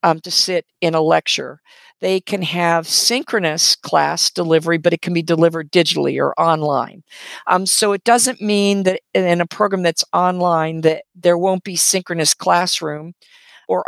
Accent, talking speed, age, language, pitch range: American, 165 wpm, 50-69, English, 170-200 Hz